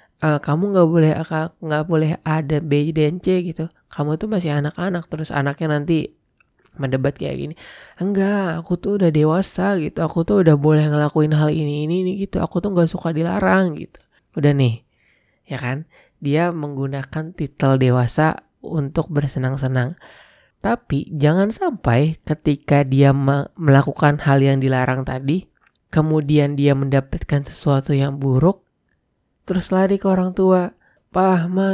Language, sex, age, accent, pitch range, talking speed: Indonesian, male, 20-39, native, 145-175 Hz, 140 wpm